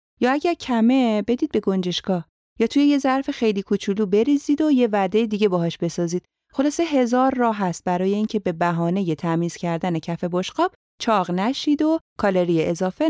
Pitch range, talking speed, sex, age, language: 170-235 Hz, 170 wpm, female, 30-49, Persian